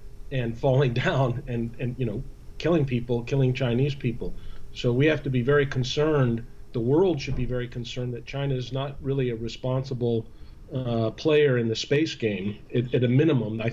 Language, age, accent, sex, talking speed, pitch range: English, 40-59, American, male, 190 wpm, 115-135 Hz